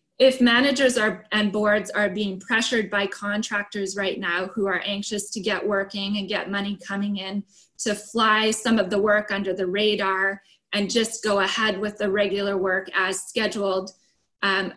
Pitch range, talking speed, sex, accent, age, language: 195-215 Hz, 175 wpm, female, American, 20-39, English